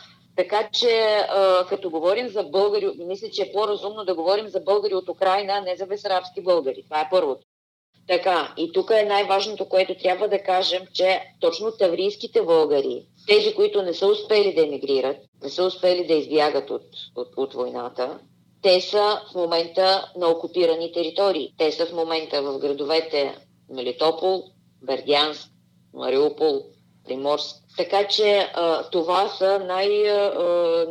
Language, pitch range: Bulgarian, 165-210 Hz